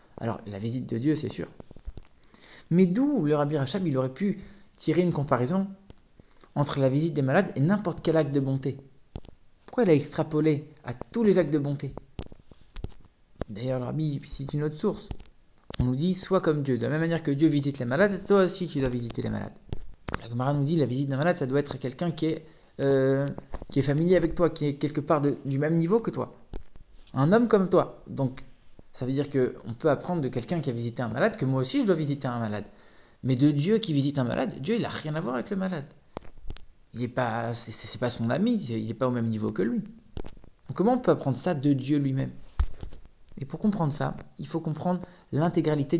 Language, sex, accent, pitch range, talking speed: English, male, French, 125-170 Hz, 225 wpm